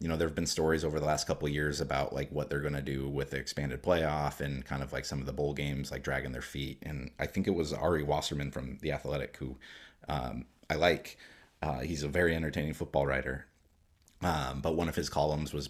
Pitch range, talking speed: 70-80 Hz, 245 wpm